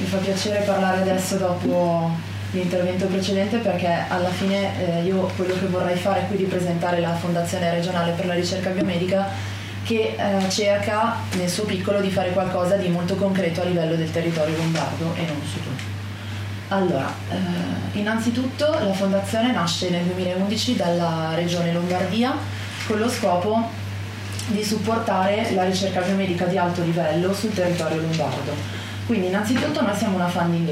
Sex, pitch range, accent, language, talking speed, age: female, 160-190 Hz, native, Italian, 150 wpm, 20-39